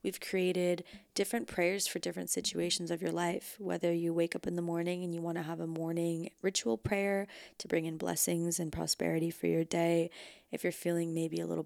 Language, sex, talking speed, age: English, female, 210 wpm, 20-39